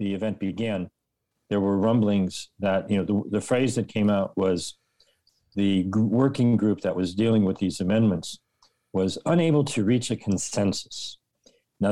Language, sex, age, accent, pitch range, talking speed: English, male, 50-69, American, 100-120 Hz, 160 wpm